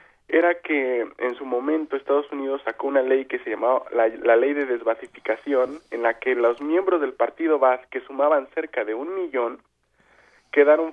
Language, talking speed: Spanish, 180 wpm